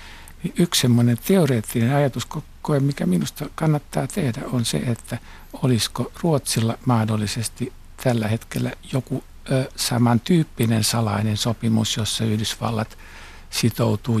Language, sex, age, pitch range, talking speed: Finnish, male, 60-79, 105-130 Hz, 95 wpm